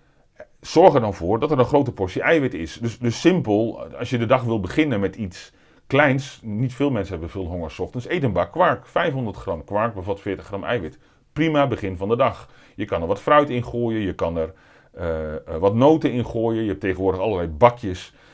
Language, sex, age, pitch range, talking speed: Dutch, male, 40-59, 95-125 Hz, 215 wpm